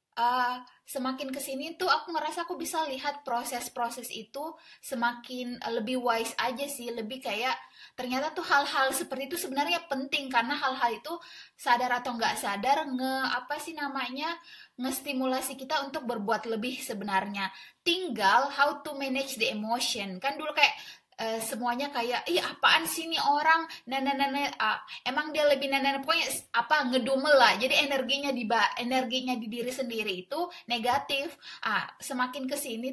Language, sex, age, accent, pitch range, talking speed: Indonesian, female, 20-39, native, 240-295 Hz, 155 wpm